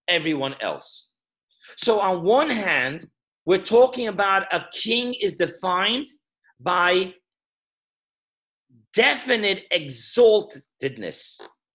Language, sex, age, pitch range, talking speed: English, male, 40-59, 180-230 Hz, 80 wpm